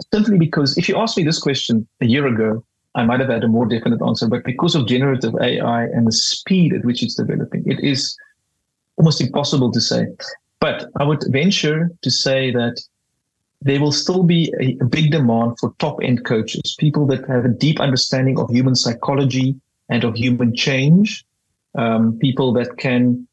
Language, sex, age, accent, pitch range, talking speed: Dutch, male, 30-49, South African, 120-150 Hz, 185 wpm